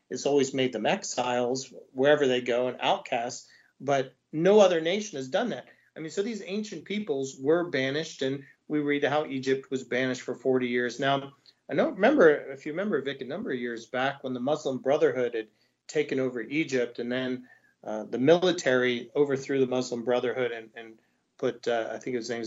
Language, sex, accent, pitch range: English, male, American, 125-155 Hz